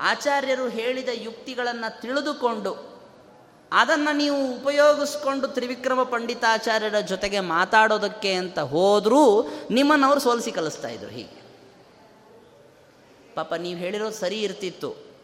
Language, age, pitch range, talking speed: Kannada, 20-39, 185-255 Hz, 95 wpm